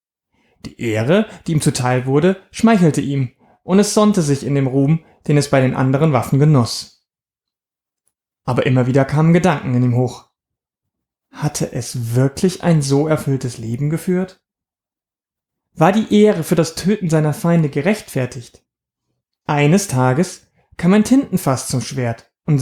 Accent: German